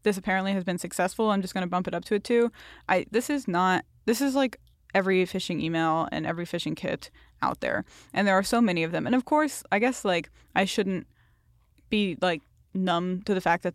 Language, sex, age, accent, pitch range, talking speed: English, female, 10-29, American, 175-210 Hz, 230 wpm